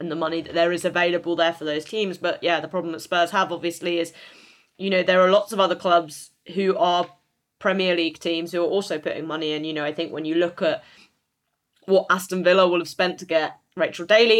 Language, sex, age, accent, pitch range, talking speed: English, female, 20-39, British, 160-185 Hz, 240 wpm